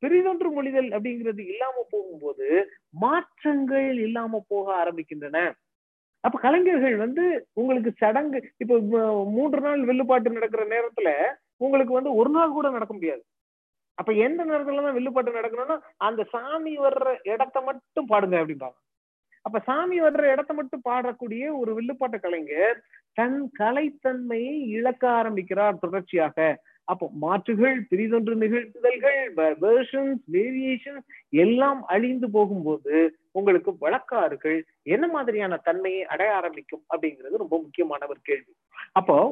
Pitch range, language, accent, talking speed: 185-275 Hz, Tamil, native, 110 wpm